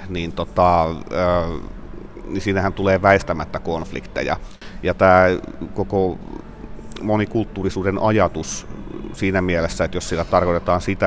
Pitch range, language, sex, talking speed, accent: 85-95 Hz, Finnish, male, 100 wpm, native